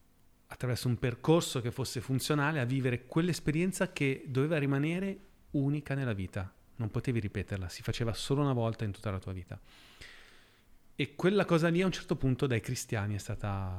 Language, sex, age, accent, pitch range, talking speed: Italian, male, 30-49, native, 105-135 Hz, 175 wpm